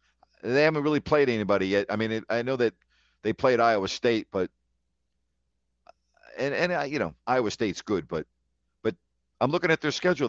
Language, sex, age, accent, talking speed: English, male, 50-69, American, 175 wpm